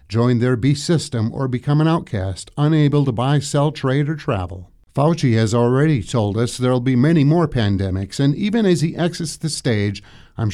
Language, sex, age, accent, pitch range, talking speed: English, male, 50-69, American, 110-155 Hz, 190 wpm